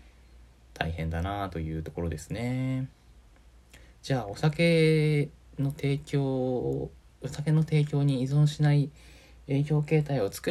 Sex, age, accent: male, 20-39, native